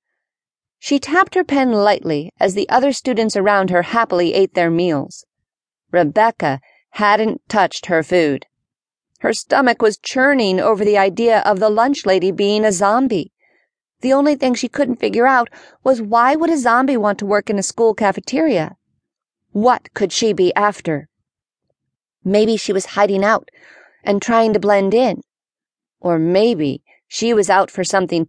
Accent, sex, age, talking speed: American, female, 40-59, 160 wpm